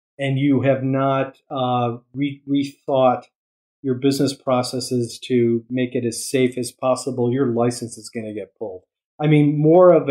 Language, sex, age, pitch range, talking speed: English, male, 40-59, 120-150 Hz, 160 wpm